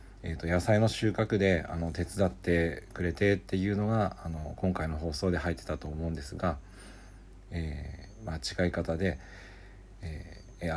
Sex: male